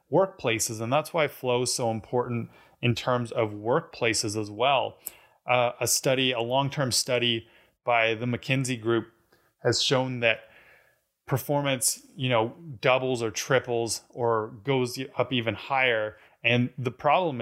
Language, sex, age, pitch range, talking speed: English, male, 20-39, 115-130 Hz, 140 wpm